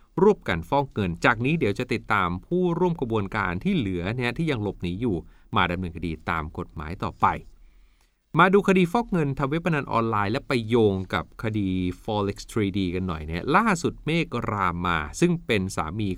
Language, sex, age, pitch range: Thai, male, 30-49, 90-125 Hz